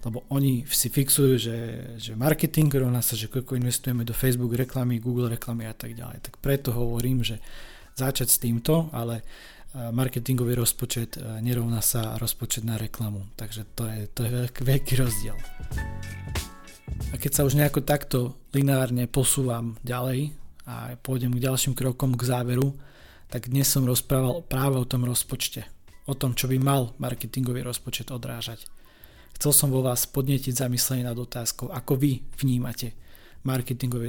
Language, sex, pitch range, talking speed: Slovak, male, 115-135 Hz, 155 wpm